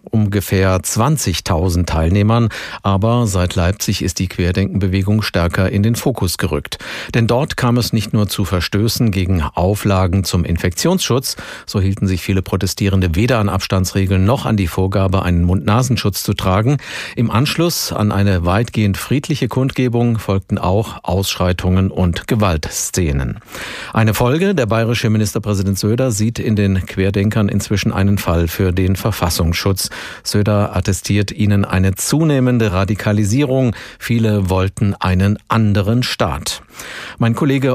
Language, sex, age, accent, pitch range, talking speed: German, male, 50-69, German, 95-115 Hz, 130 wpm